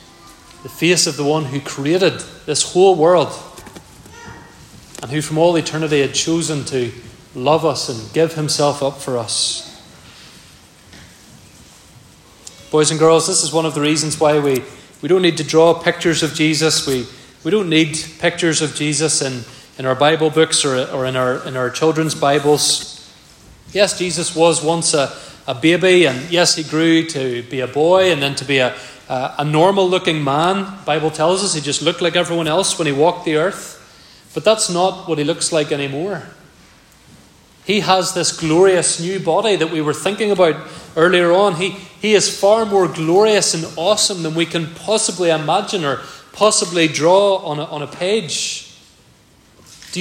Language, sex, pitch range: English, male, 150-185 Hz